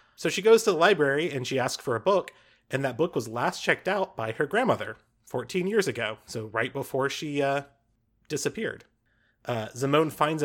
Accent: American